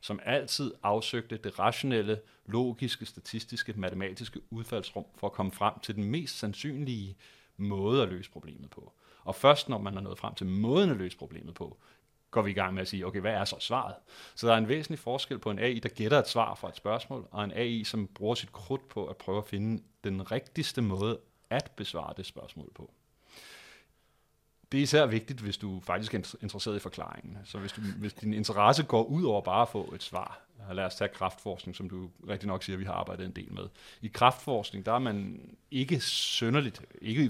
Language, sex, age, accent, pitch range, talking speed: Danish, male, 30-49, native, 100-120 Hz, 215 wpm